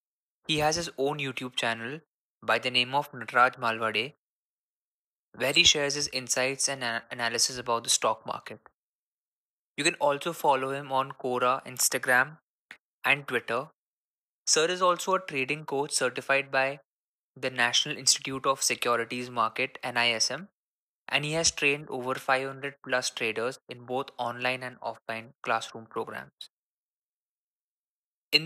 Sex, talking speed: male, 135 wpm